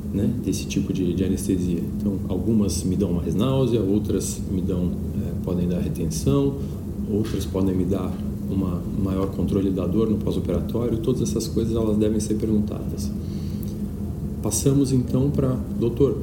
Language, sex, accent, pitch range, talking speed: Portuguese, male, Brazilian, 95-115 Hz, 150 wpm